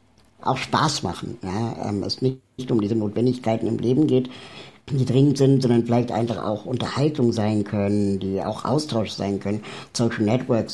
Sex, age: male, 60-79